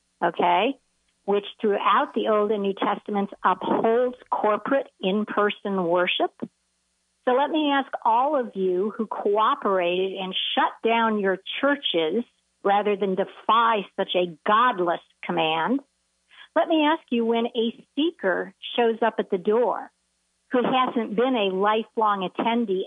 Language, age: English, 50-69